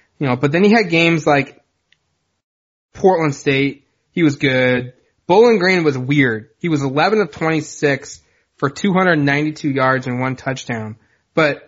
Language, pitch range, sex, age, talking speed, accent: English, 135-160 Hz, male, 20-39, 150 wpm, American